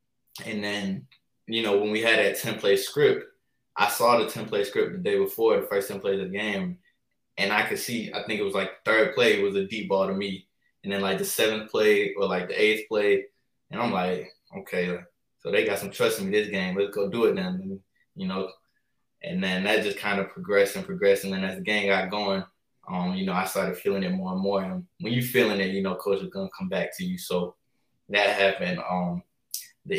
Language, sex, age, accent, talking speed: English, male, 20-39, American, 240 wpm